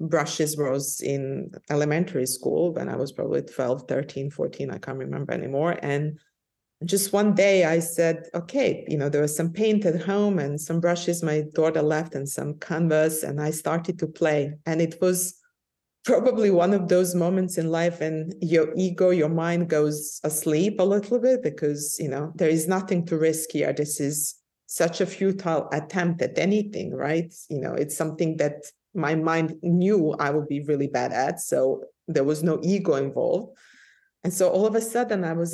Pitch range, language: 155-190 Hz, English